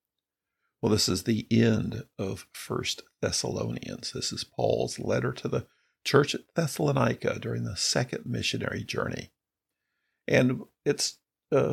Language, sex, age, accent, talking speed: English, male, 50-69, American, 130 wpm